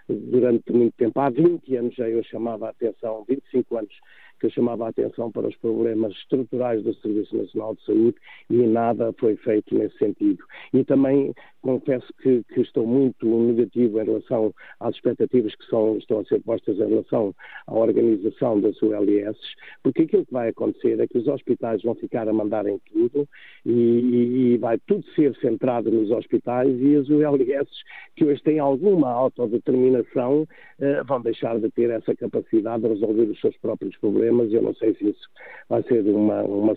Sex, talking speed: male, 180 wpm